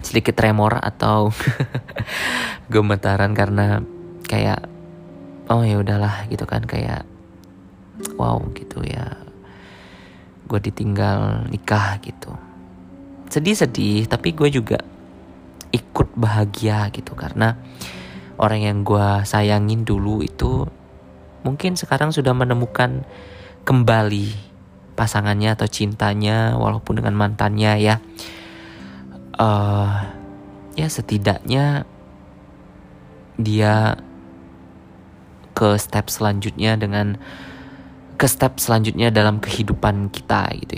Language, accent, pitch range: Indonesian, native, 95-110 Hz